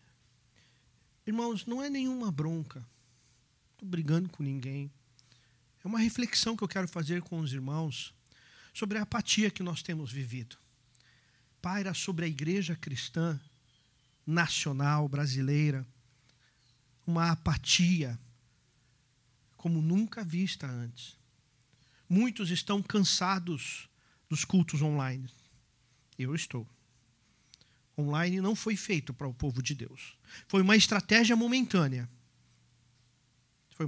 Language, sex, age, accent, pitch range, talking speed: Portuguese, male, 50-69, Brazilian, 125-185 Hz, 110 wpm